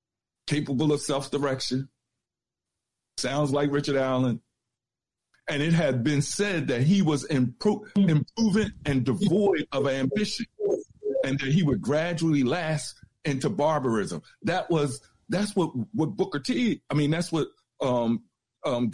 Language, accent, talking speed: English, American, 135 wpm